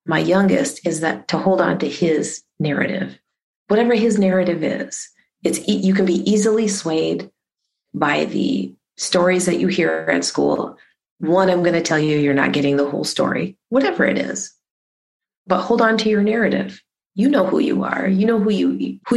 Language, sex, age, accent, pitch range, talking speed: English, female, 30-49, American, 180-230 Hz, 185 wpm